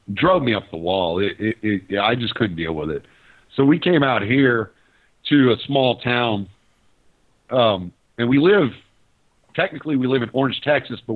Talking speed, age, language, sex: 190 wpm, 50-69, English, male